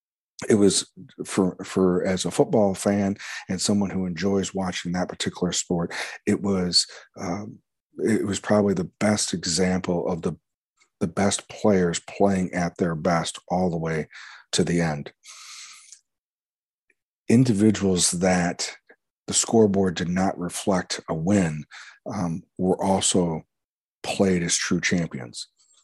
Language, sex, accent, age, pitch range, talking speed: English, male, American, 40-59, 90-95 Hz, 130 wpm